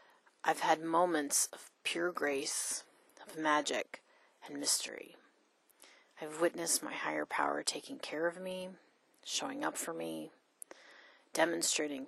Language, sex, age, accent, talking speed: English, female, 30-49, American, 120 wpm